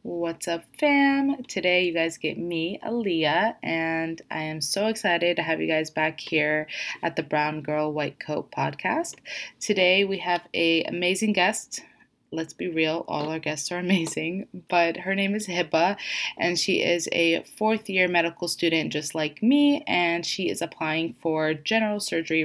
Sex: female